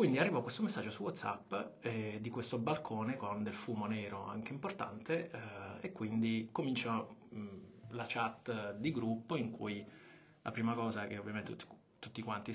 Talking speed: 165 wpm